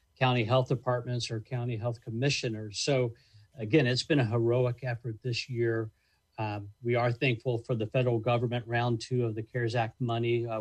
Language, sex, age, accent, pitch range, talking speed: English, male, 50-69, American, 110-125 Hz, 180 wpm